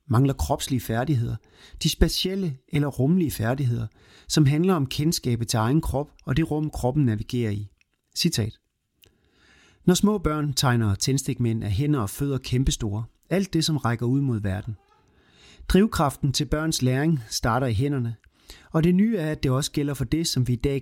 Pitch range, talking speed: 115-155 Hz, 175 wpm